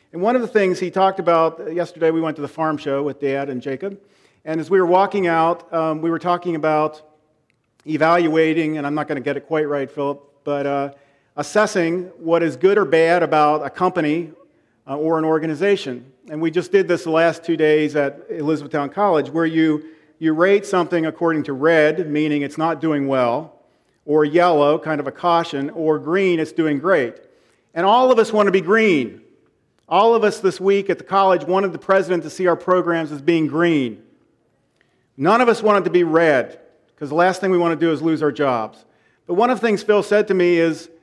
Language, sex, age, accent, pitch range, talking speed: English, male, 40-59, American, 155-195 Hz, 215 wpm